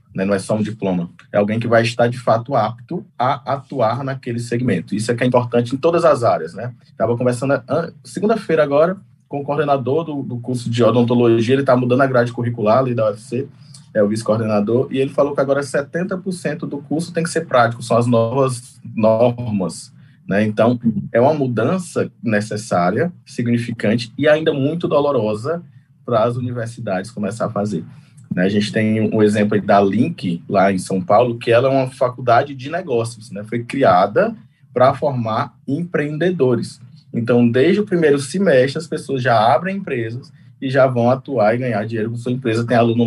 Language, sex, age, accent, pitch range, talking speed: English, male, 20-39, Brazilian, 110-140 Hz, 185 wpm